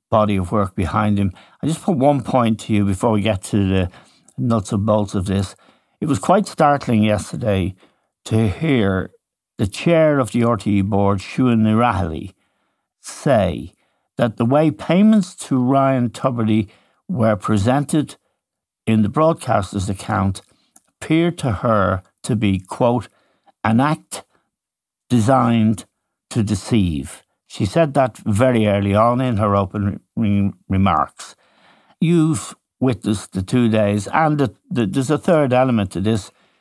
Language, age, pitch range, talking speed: English, 60-79, 100-135 Hz, 140 wpm